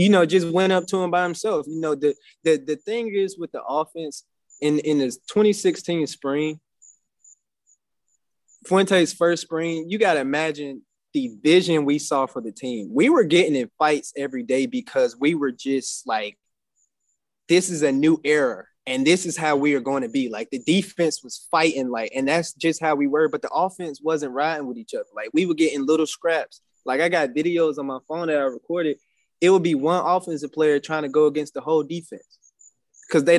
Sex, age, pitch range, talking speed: male, 20-39, 145-180 Hz, 205 wpm